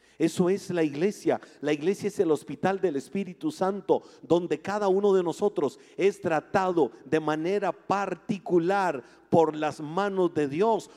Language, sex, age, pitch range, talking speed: Spanish, male, 50-69, 180-240 Hz, 150 wpm